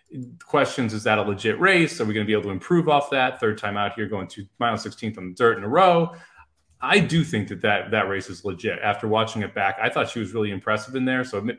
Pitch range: 105-145 Hz